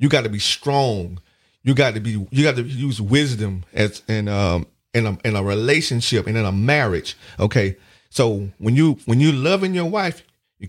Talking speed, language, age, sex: 195 wpm, English, 40-59, male